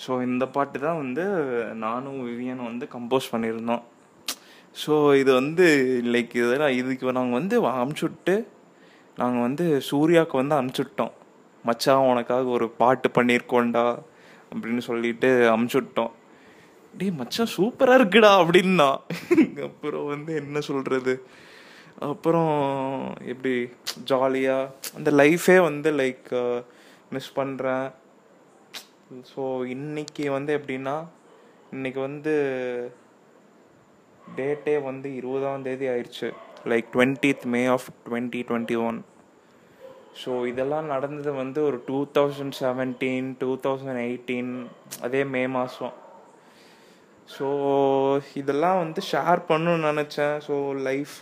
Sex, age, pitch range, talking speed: male, 20-39, 125-150 Hz, 110 wpm